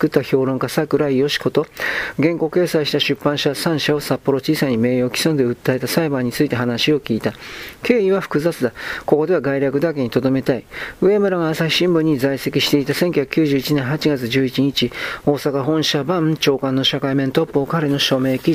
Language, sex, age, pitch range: Japanese, male, 40-59, 130-155 Hz